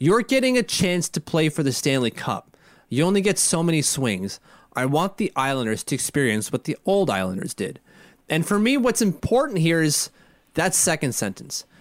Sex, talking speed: male, 190 wpm